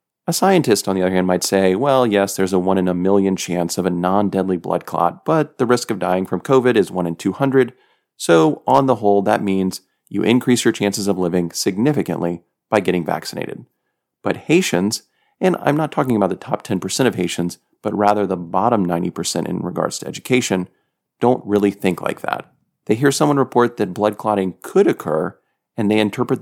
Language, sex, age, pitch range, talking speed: English, male, 30-49, 95-120 Hz, 200 wpm